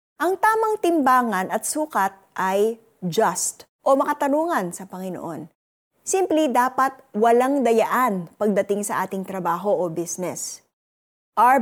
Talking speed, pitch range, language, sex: 115 wpm, 190-260 Hz, Filipino, female